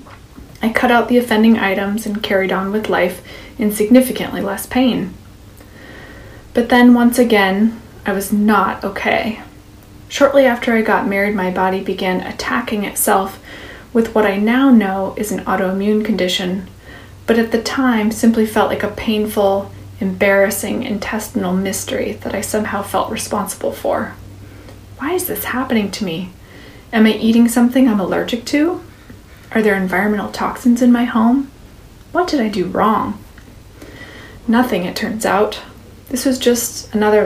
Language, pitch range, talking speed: English, 185-230 Hz, 150 wpm